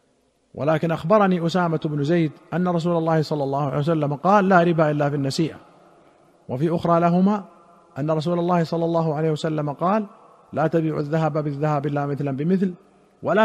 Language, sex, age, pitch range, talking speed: Arabic, male, 50-69, 150-180 Hz, 160 wpm